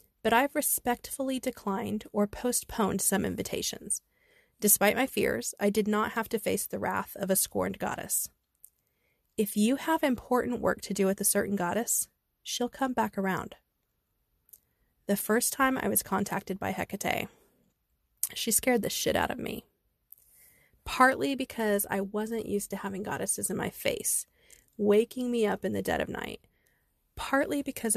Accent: American